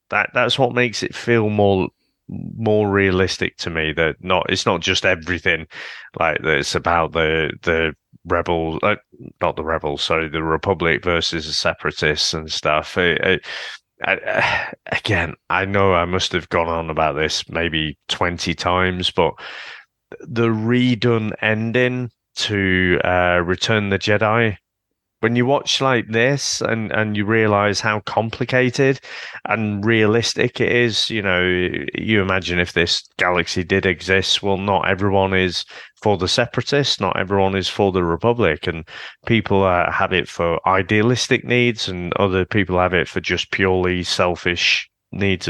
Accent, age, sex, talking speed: British, 30-49, male, 155 wpm